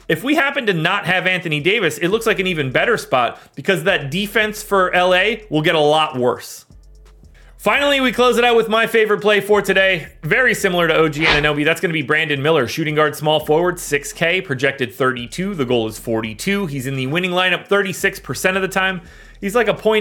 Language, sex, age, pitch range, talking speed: English, male, 30-49, 150-190 Hz, 215 wpm